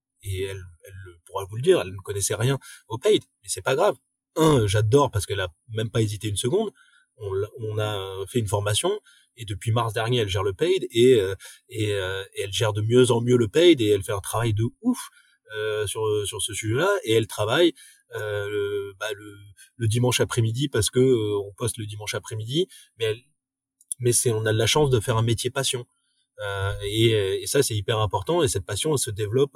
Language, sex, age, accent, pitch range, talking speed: French, male, 30-49, French, 105-130 Hz, 210 wpm